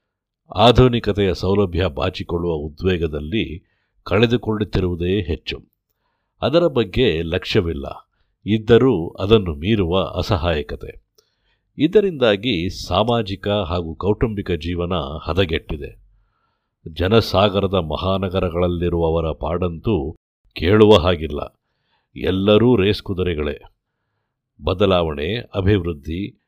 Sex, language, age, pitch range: male, Kannada, 50-69, 85-105 Hz